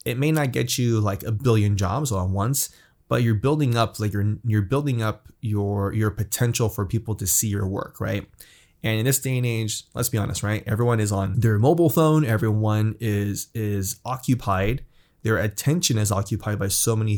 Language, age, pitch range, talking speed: English, 20-39, 100-120 Hz, 205 wpm